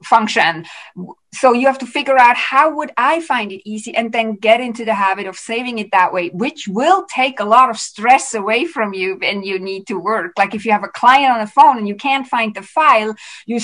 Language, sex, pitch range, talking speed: English, female, 205-270 Hz, 240 wpm